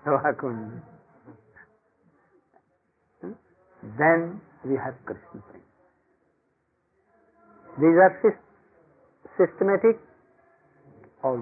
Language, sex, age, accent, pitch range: English, male, 60-79, Indian, 165-230 Hz